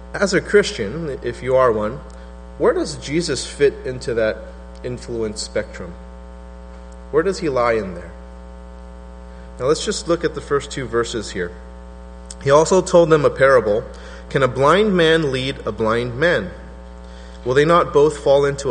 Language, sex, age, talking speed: English, male, 30-49, 165 wpm